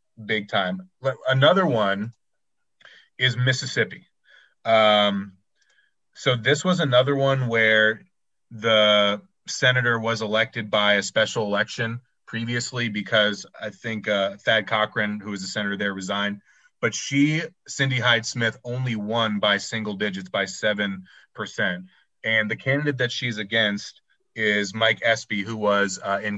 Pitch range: 100-115 Hz